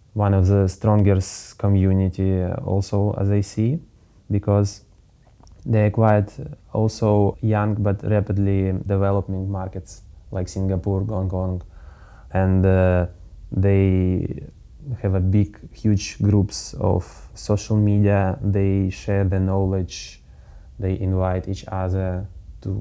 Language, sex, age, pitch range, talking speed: German, male, 20-39, 95-105 Hz, 115 wpm